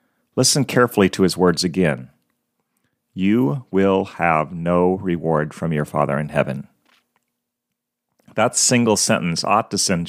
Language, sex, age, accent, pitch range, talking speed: English, male, 40-59, American, 90-125 Hz, 130 wpm